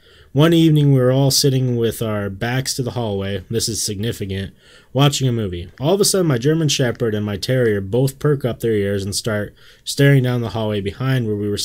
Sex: male